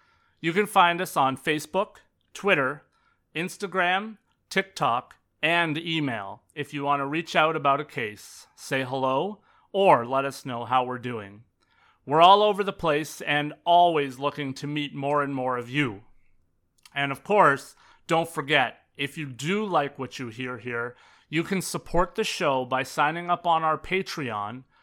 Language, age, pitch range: English, 30-49, 135-170 Hz